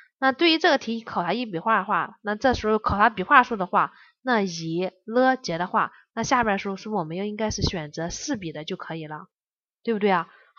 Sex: female